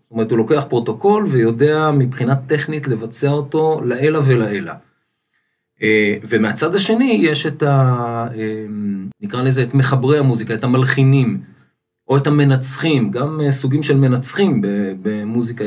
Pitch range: 115-145 Hz